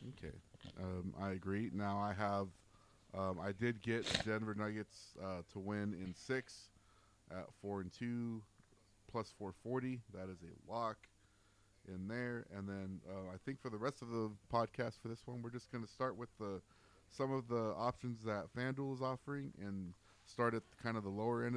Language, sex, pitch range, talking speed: English, male, 95-115 Hz, 185 wpm